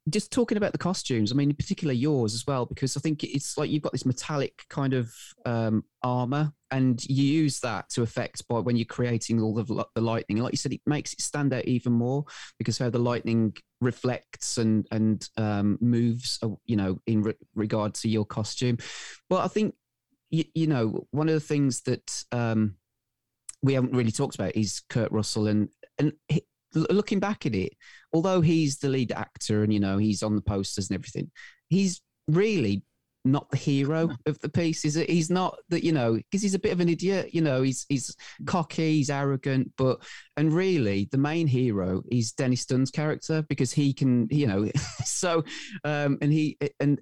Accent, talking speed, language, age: British, 195 wpm, English, 30-49